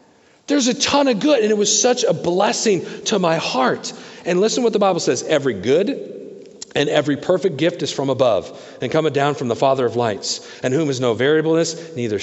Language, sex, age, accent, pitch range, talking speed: English, male, 50-69, American, 130-205 Hz, 215 wpm